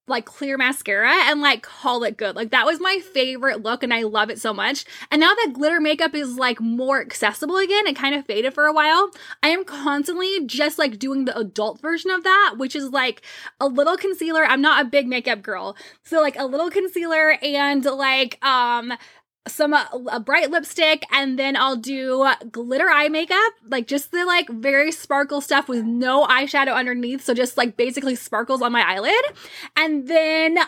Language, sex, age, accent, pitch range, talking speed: English, female, 10-29, American, 245-315 Hz, 195 wpm